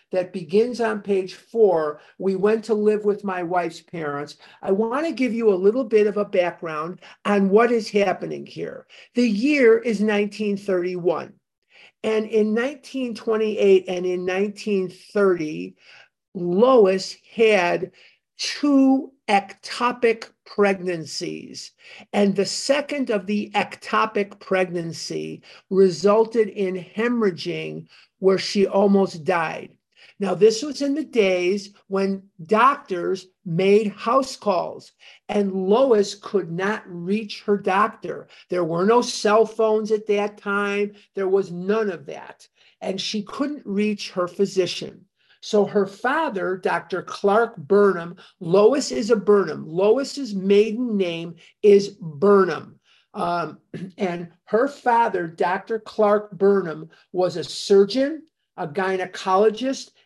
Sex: male